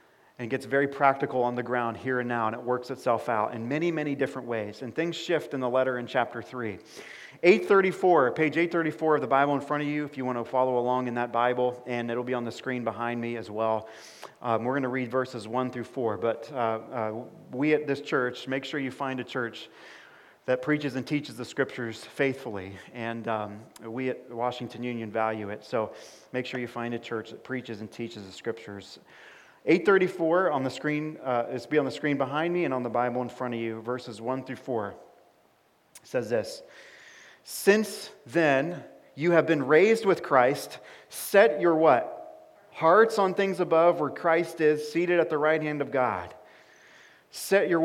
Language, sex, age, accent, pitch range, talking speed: English, male, 40-59, American, 120-155 Hz, 205 wpm